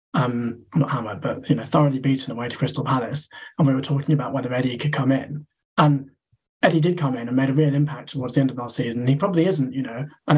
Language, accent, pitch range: English, British, 135-155 Hz